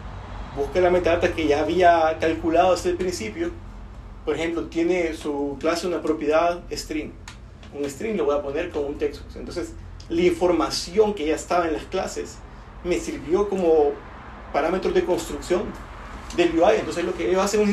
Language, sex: Spanish, male